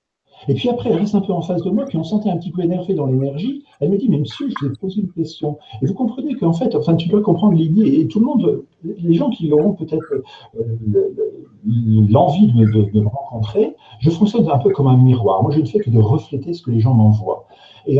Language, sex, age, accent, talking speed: French, male, 50-69, French, 255 wpm